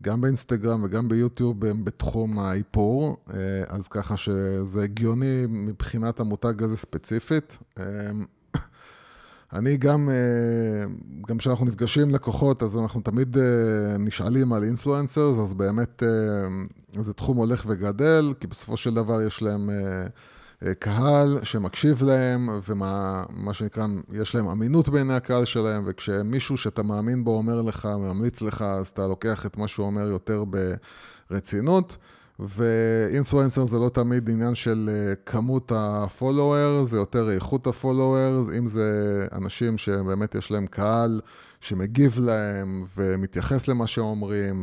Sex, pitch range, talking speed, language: male, 100-120 Hz, 125 wpm, Hebrew